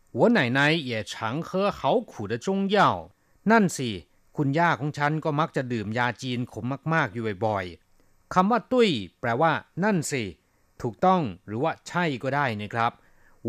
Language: Thai